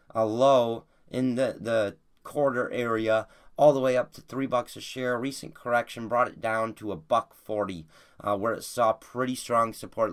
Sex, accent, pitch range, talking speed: male, American, 110-150 Hz, 190 wpm